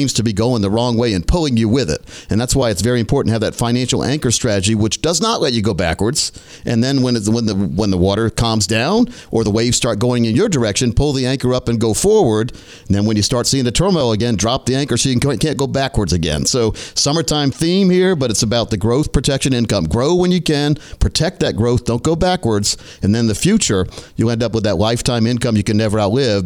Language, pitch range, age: English, 110-140 Hz, 50-69